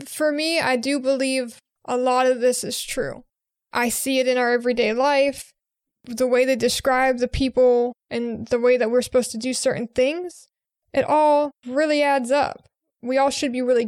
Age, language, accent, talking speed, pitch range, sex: 20-39, English, American, 190 wpm, 245-275 Hz, female